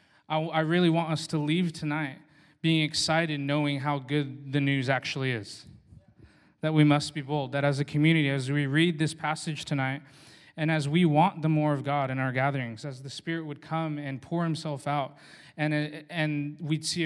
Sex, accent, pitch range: male, American, 145-165 Hz